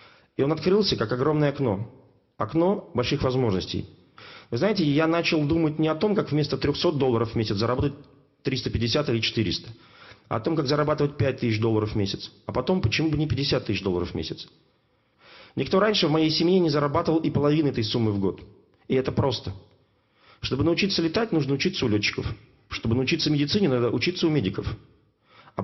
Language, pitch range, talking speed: Russian, 110-160 Hz, 185 wpm